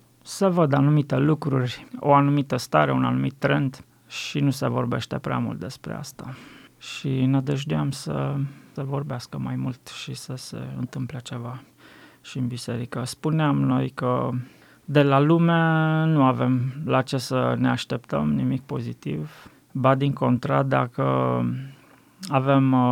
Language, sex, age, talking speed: Romanian, male, 20-39, 140 wpm